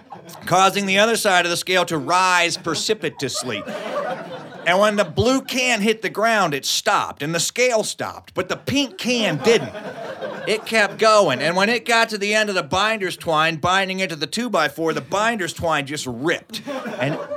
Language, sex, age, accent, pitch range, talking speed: English, male, 40-59, American, 160-215 Hz, 185 wpm